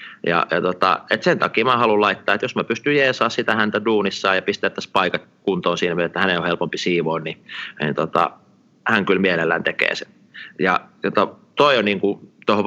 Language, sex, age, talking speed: Finnish, male, 30-49, 205 wpm